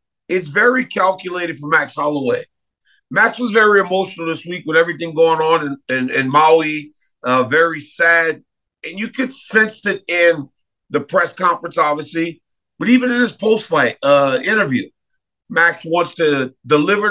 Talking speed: 150 wpm